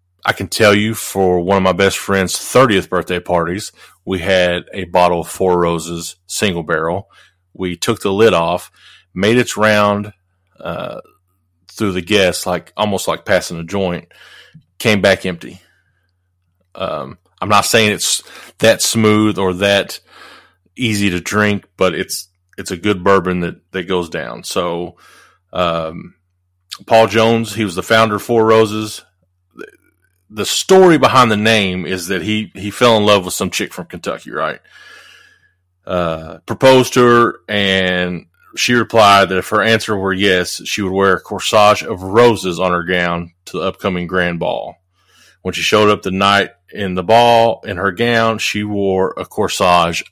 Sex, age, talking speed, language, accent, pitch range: male, 30-49, 165 wpm, English, American, 90-110 Hz